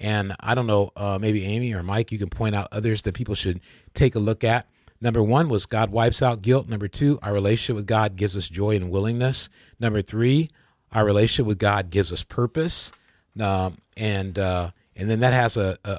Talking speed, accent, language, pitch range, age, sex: 215 wpm, American, English, 100-120 Hz, 40-59, male